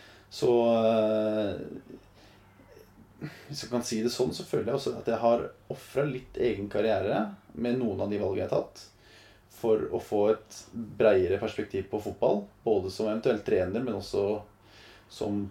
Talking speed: 185 wpm